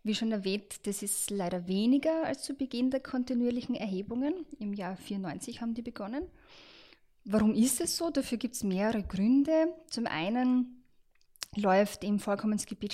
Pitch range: 185-245 Hz